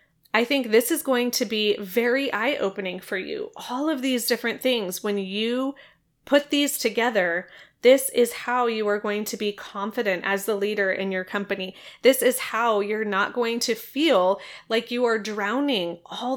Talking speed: 185 wpm